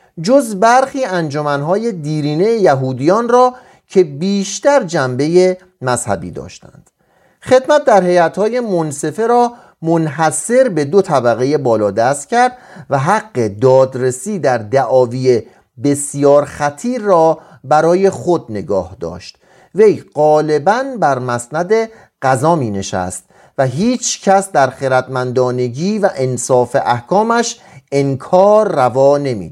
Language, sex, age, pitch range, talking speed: Persian, male, 40-59, 130-195 Hz, 105 wpm